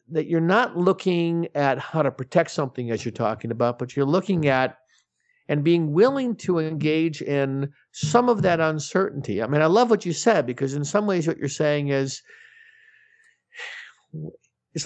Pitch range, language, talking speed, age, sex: 140-195 Hz, English, 175 wpm, 50-69, male